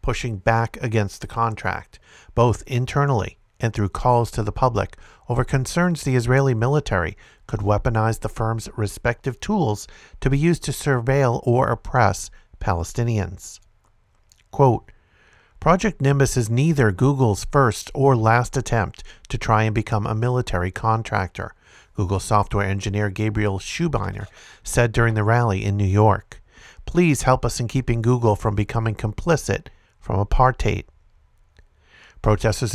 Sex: male